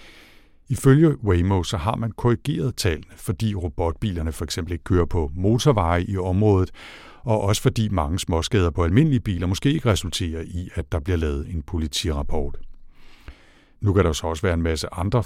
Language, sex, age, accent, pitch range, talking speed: Danish, male, 60-79, native, 80-105 Hz, 170 wpm